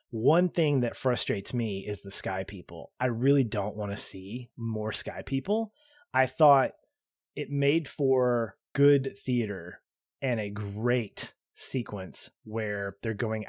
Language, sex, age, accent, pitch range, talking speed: English, male, 20-39, American, 105-140 Hz, 140 wpm